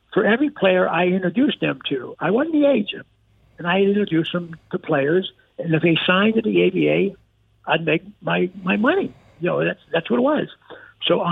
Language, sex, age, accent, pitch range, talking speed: English, male, 60-79, American, 145-190 Hz, 195 wpm